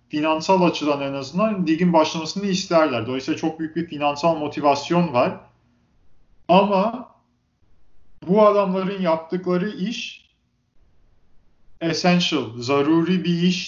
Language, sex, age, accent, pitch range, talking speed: Turkish, male, 40-59, native, 125-165 Hz, 100 wpm